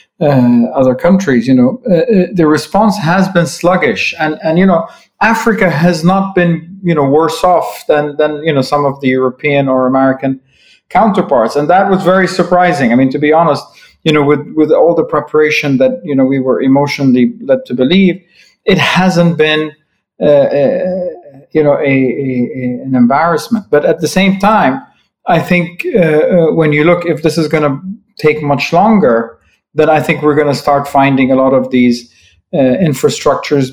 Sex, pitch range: male, 130-170 Hz